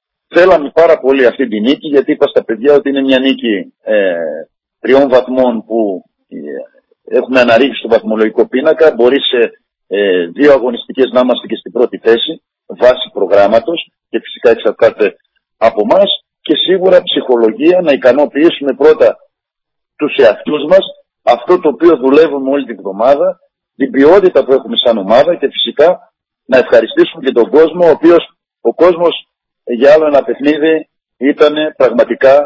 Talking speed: 150 wpm